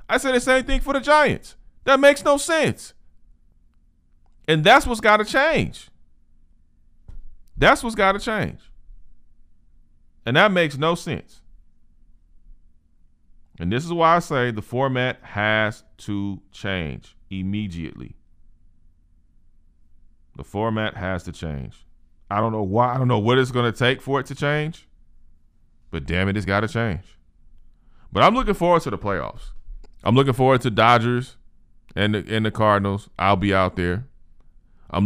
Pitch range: 75-110 Hz